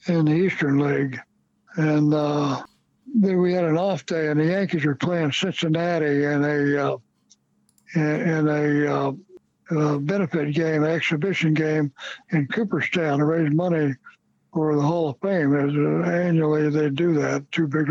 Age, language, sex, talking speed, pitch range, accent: 60-79, English, male, 160 wpm, 150-170 Hz, American